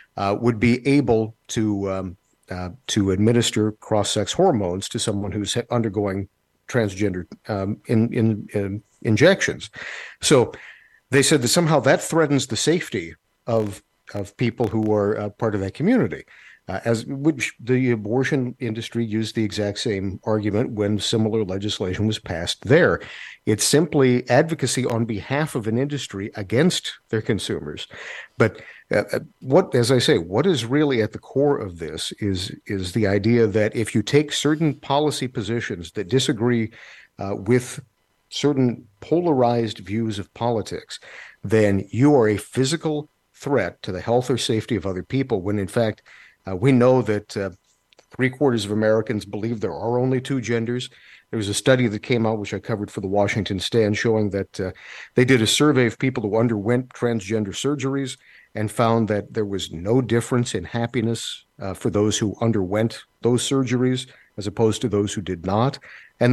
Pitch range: 105-130 Hz